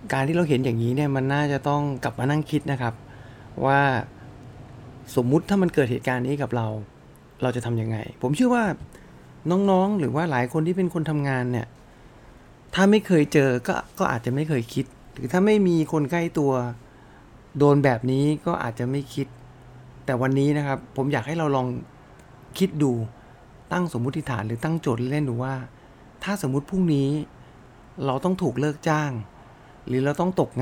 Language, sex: English, male